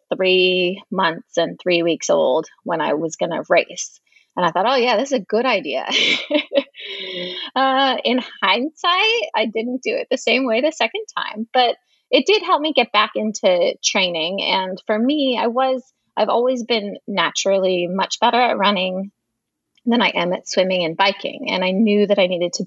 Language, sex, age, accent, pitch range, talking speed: English, female, 20-39, American, 190-260 Hz, 190 wpm